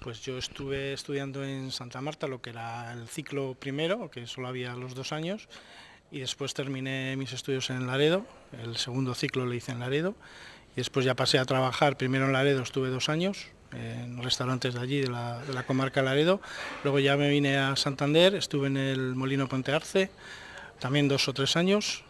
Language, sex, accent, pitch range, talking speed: Spanish, male, Spanish, 130-150 Hz, 195 wpm